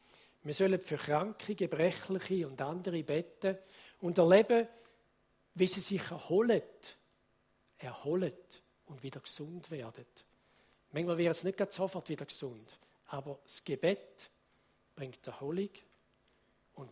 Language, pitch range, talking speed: German, 145-185 Hz, 115 wpm